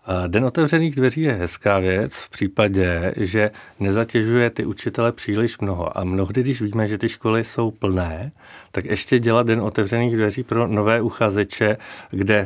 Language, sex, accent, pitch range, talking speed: Czech, male, native, 100-115 Hz, 160 wpm